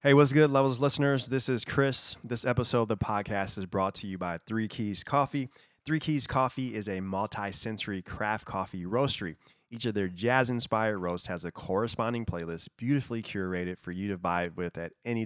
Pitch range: 100-125 Hz